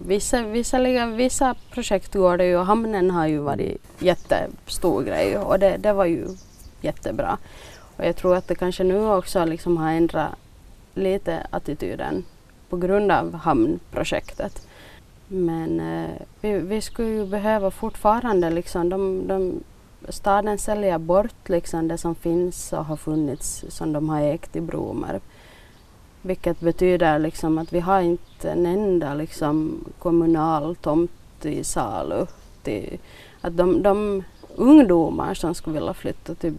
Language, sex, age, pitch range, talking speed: Swedish, female, 30-49, 160-200 Hz, 140 wpm